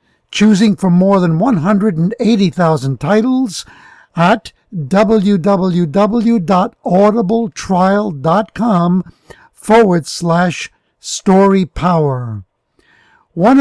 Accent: American